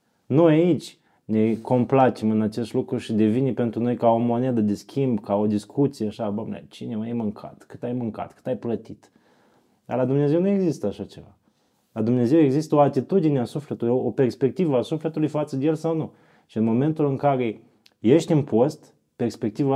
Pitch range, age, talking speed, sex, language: 115-155 Hz, 20-39, 190 wpm, male, Romanian